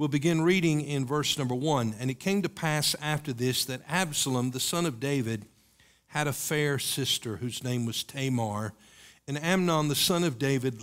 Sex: male